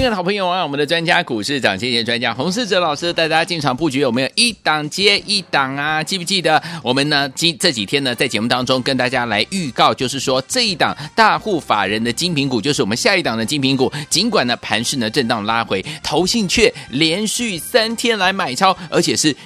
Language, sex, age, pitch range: Chinese, male, 30-49, 135-200 Hz